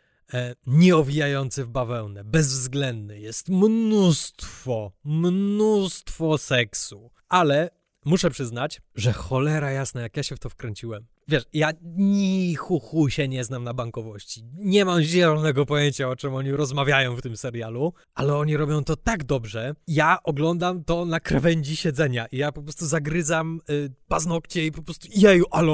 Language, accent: Polish, native